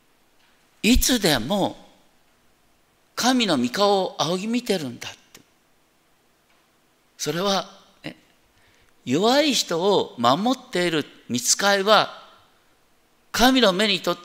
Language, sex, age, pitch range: Japanese, male, 50-69, 150-220 Hz